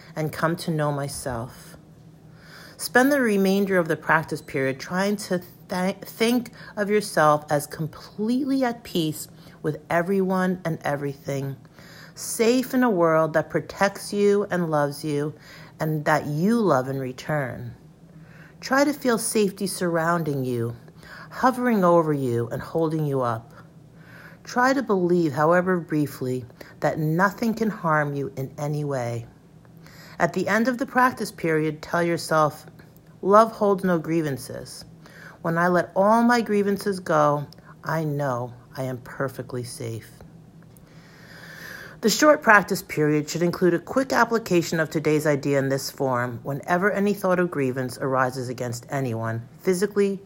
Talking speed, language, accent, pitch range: 140 wpm, English, American, 150-185 Hz